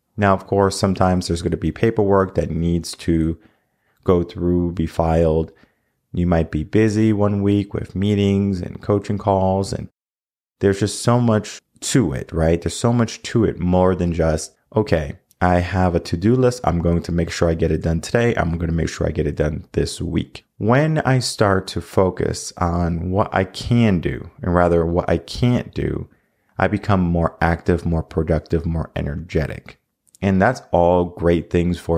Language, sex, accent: English, male, American